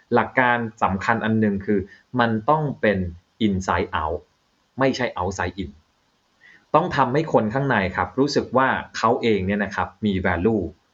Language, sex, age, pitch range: Thai, male, 20-39, 100-130 Hz